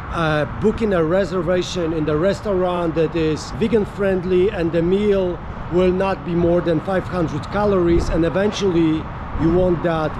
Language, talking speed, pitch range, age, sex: English, 145 wpm, 160-195 Hz, 50-69, male